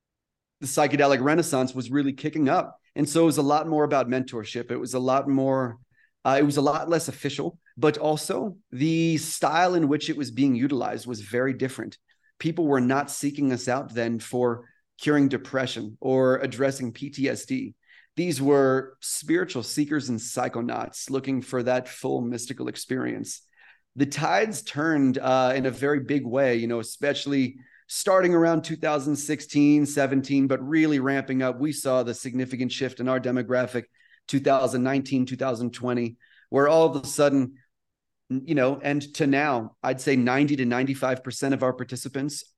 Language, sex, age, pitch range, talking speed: English, male, 30-49, 130-150 Hz, 160 wpm